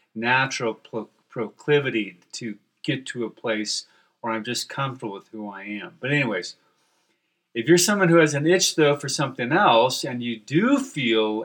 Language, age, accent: English, 40-59, American